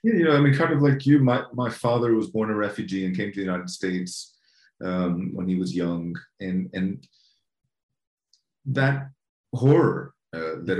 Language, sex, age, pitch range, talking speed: English, male, 30-49, 90-135 Hz, 185 wpm